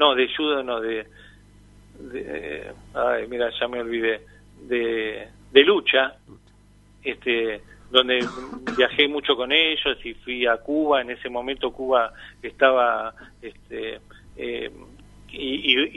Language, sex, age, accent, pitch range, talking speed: Spanish, male, 40-59, Argentinian, 115-140 Hz, 115 wpm